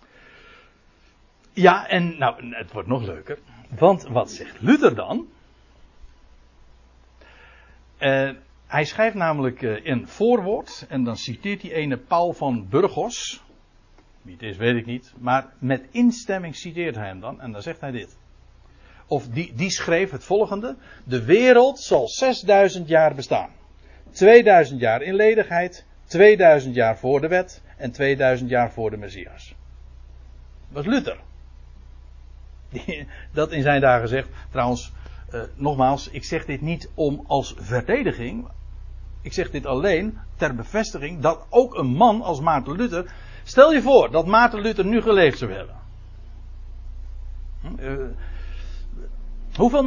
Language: Dutch